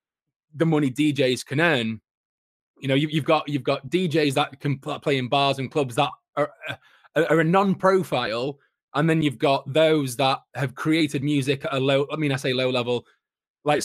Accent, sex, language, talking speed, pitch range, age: British, male, English, 195 wpm, 135-165 Hz, 20-39